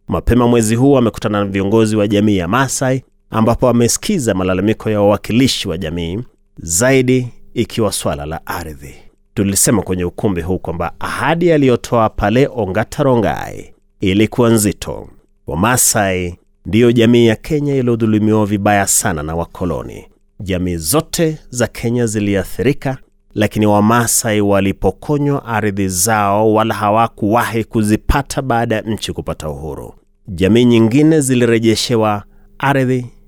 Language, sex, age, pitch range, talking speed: Swahili, male, 30-49, 100-125 Hz, 120 wpm